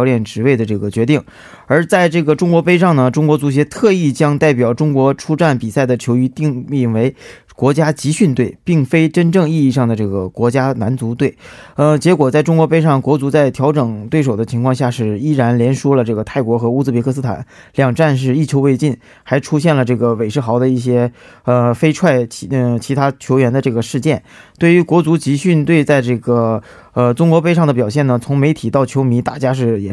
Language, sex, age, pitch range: Korean, male, 20-39, 120-150 Hz